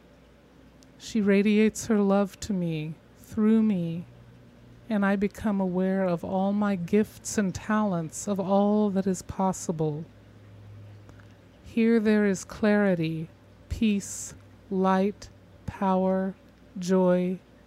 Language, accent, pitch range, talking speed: English, American, 170-200 Hz, 105 wpm